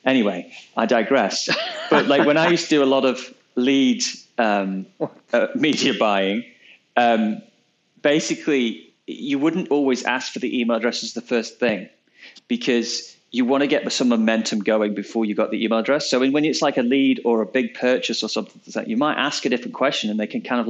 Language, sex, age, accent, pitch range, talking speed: English, male, 30-49, British, 110-145 Hz, 205 wpm